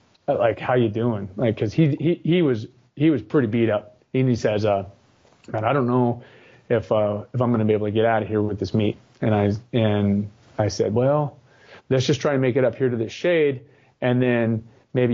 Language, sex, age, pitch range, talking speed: English, male, 30-49, 110-135 Hz, 235 wpm